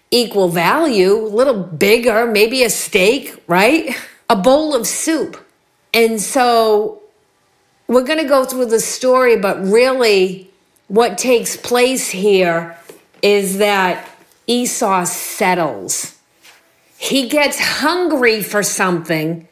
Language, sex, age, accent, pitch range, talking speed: English, female, 50-69, American, 190-255 Hz, 115 wpm